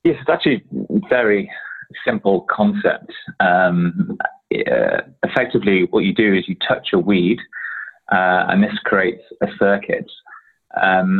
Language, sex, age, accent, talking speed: English, male, 20-39, British, 135 wpm